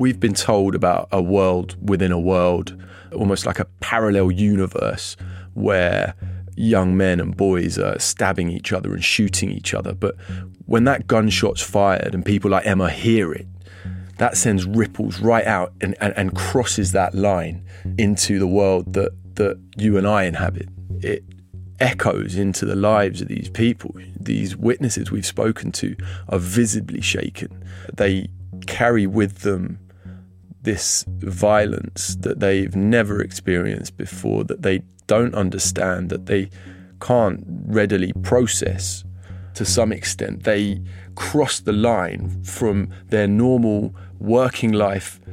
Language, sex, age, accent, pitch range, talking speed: English, male, 30-49, British, 95-110 Hz, 140 wpm